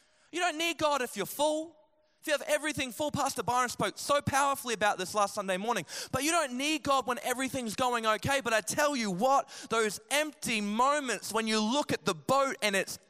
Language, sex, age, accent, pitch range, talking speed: English, male, 20-39, Australian, 165-245 Hz, 215 wpm